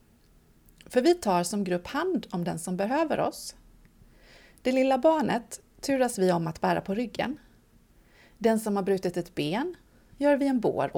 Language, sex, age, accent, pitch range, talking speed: Swedish, female, 30-49, native, 180-265 Hz, 170 wpm